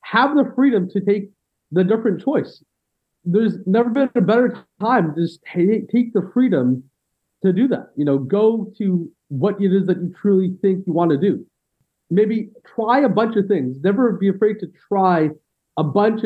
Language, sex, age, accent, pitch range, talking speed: English, male, 40-59, American, 170-210 Hz, 185 wpm